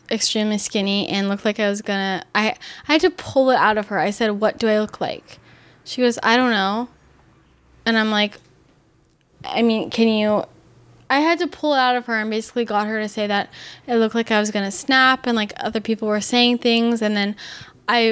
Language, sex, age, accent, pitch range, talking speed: English, female, 10-29, American, 210-245 Hz, 225 wpm